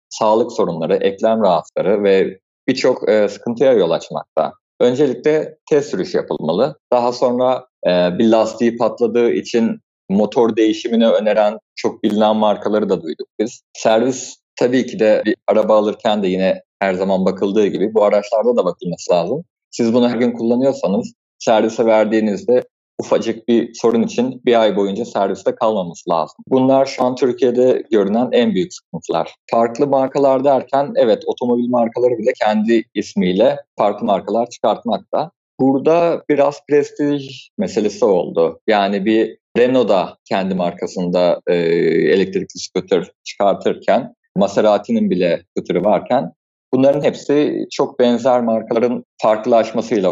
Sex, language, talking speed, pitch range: male, Turkish, 125 wpm, 110-150 Hz